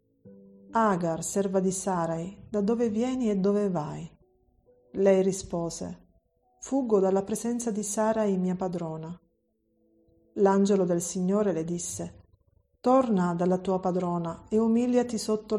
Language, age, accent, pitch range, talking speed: Italian, 40-59, native, 175-215 Hz, 120 wpm